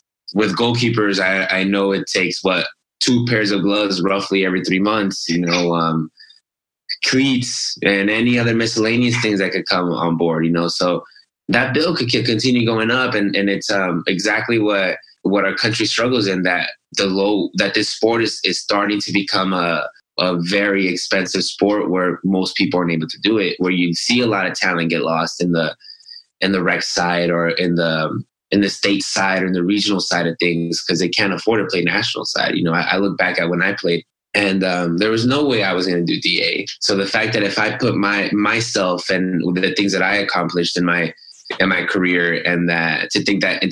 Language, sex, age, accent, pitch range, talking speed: English, male, 20-39, American, 90-105 Hz, 220 wpm